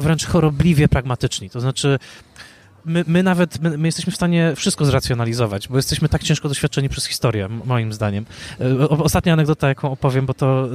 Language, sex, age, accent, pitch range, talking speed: Polish, male, 20-39, native, 125-155 Hz, 175 wpm